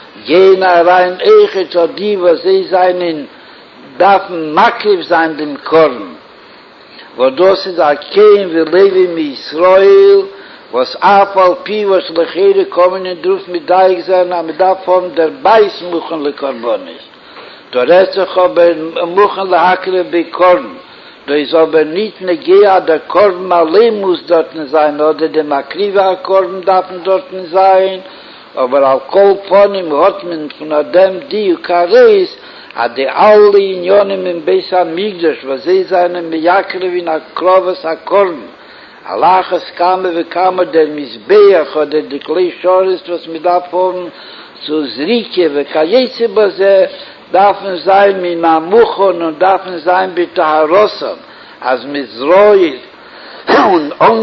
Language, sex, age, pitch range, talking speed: Hebrew, male, 60-79, 165-195 Hz, 110 wpm